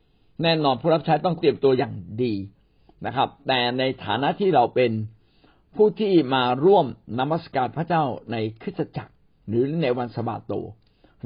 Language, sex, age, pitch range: Thai, male, 60-79, 120-165 Hz